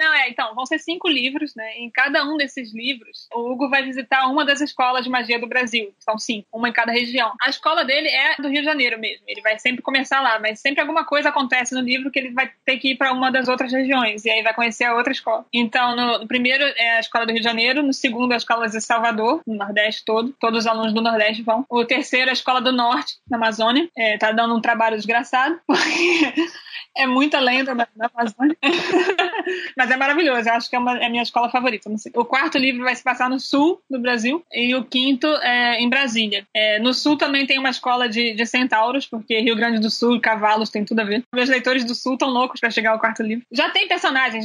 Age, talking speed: 20-39, 245 wpm